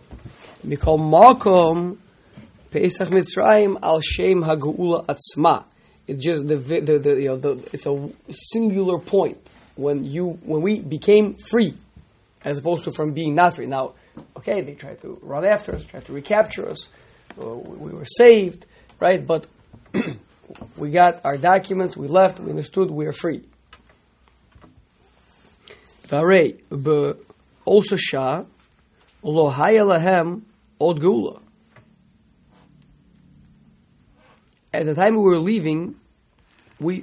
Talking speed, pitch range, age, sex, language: 100 wpm, 140-185 Hz, 30-49, male, English